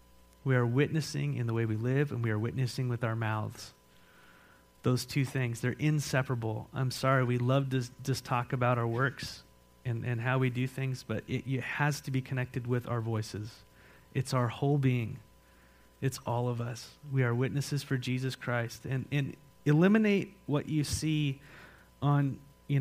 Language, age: English, 30-49